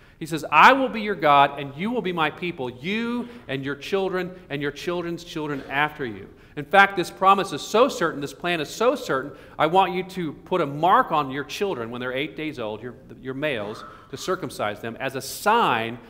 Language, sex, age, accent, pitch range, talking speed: English, male, 40-59, American, 145-200 Hz, 220 wpm